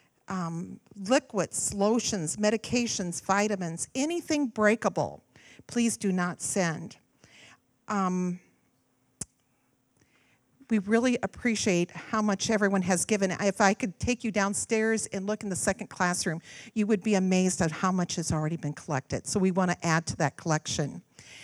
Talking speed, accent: 145 wpm, American